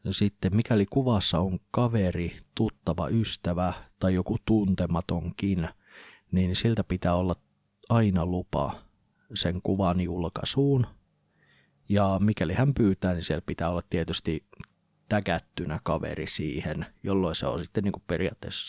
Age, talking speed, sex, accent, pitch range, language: 30-49, 120 wpm, male, native, 90-100 Hz, Finnish